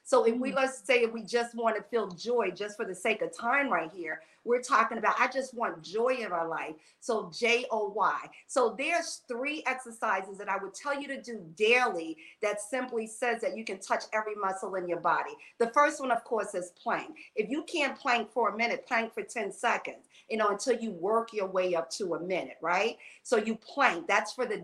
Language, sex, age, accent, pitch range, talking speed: English, female, 50-69, American, 220-260 Hz, 230 wpm